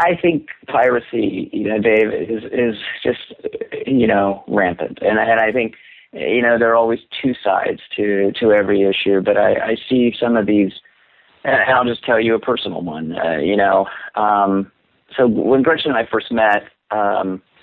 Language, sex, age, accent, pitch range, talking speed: English, male, 40-59, American, 100-115 Hz, 185 wpm